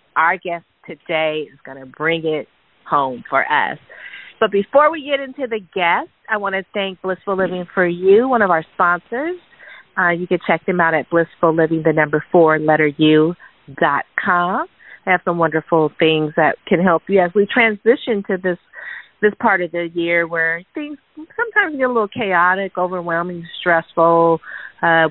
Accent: American